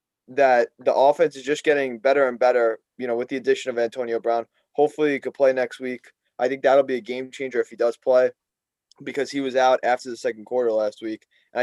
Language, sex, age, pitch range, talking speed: English, male, 20-39, 115-145 Hz, 230 wpm